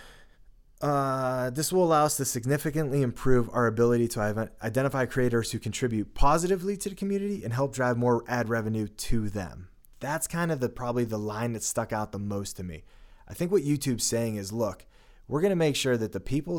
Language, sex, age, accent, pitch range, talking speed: English, male, 20-39, American, 105-130 Hz, 205 wpm